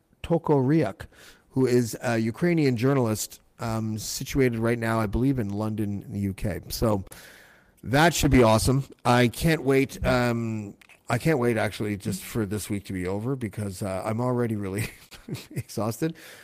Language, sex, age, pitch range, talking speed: English, male, 50-69, 105-145 Hz, 160 wpm